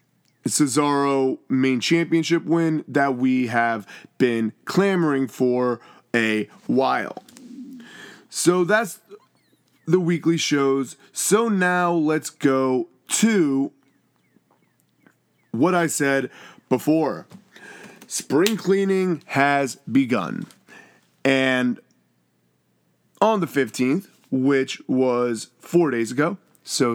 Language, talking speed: English, 90 wpm